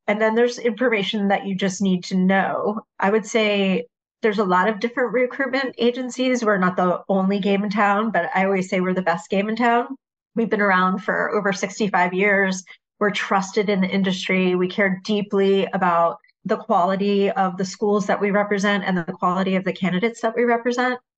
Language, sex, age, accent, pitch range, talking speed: English, female, 30-49, American, 185-210 Hz, 200 wpm